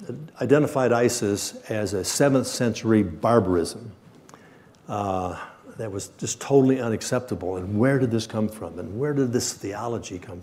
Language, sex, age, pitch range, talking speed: English, male, 60-79, 100-130 Hz, 145 wpm